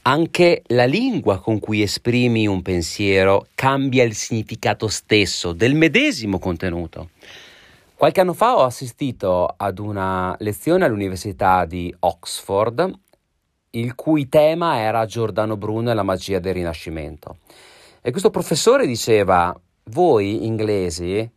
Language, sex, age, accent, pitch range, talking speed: Italian, male, 40-59, native, 95-145 Hz, 120 wpm